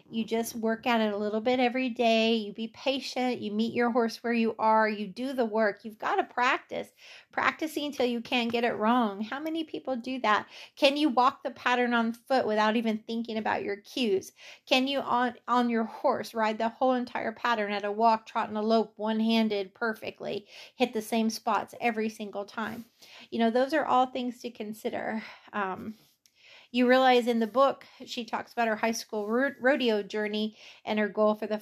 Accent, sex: American, female